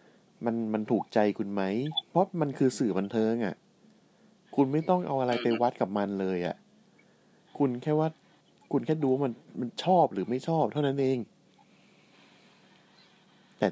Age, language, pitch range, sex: 20-39, Thai, 100-155 Hz, male